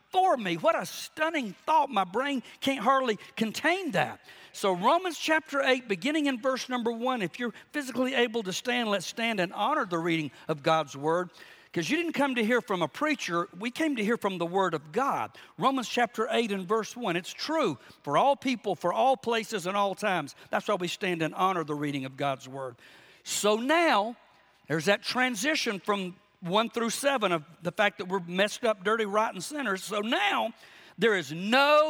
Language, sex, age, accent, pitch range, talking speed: English, male, 50-69, American, 190-265 Hz, 200 wpm